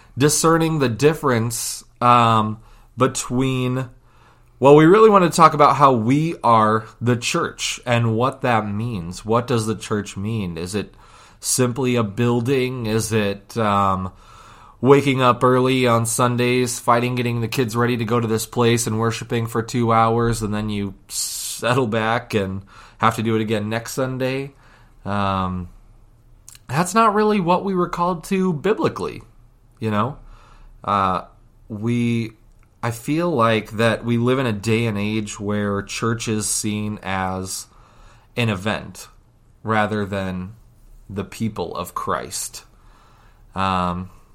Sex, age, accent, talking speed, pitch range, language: male, 20-39, American, 145 wpm, 110-125 Hz, English